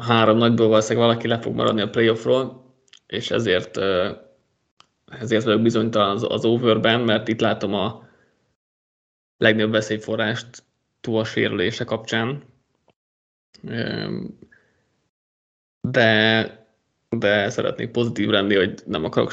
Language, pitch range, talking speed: Hungarian, 110-120 Hz, 110 wpm